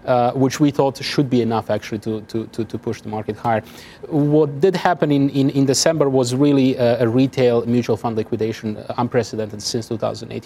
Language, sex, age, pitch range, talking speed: English, male, 30-49, 120-155 Hz, 200 wpm